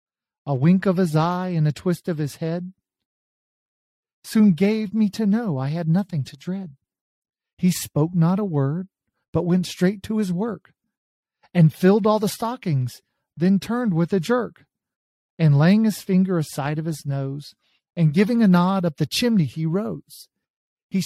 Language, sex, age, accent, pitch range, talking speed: English, male, 40-59, American, 140-185 Hz, 170 wpm